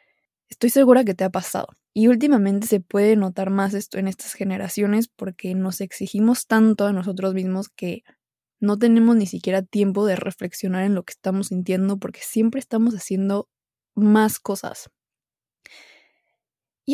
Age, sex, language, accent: 20-39, female, Spanish, Mexican